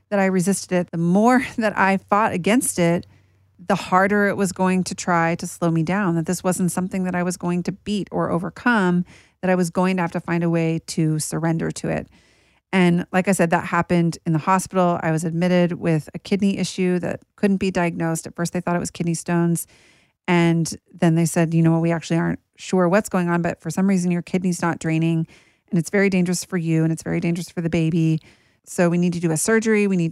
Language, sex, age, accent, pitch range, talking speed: English, female, 40-59, American, 170-190 Hz, 240 wpm